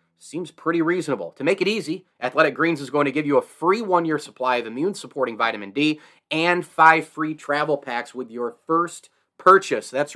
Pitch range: 120-150 Hz